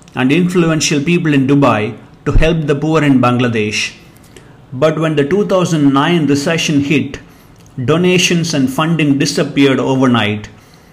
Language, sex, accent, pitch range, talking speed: English, male, Indian, 130-165 Hz, 120 wpm